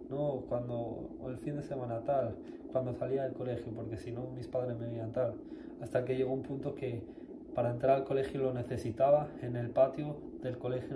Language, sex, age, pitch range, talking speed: Spanish, male, 20-39, 125-150 Hz, 205 wpm